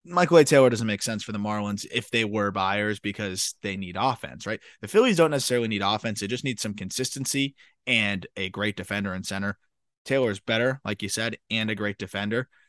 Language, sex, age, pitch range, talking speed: English, male, 20-39, 105-125 Hz, 215 wpm